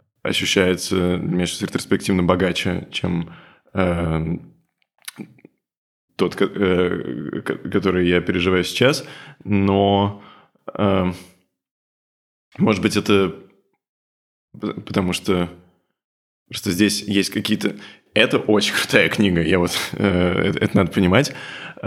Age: 20-39